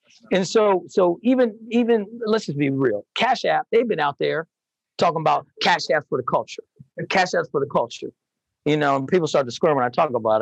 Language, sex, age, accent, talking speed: English, male, 40-59, American, 225 wpm